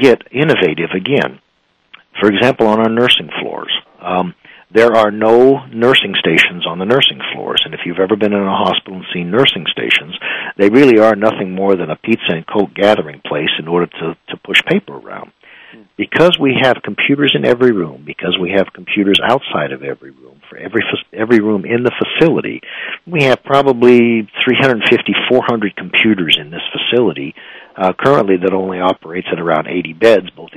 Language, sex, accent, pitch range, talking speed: English, male, American, 95-120 Hz, 185 wpm